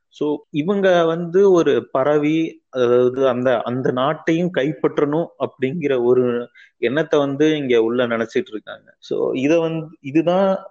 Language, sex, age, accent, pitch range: Tamil, male, 30-49, native, 120-160 Hz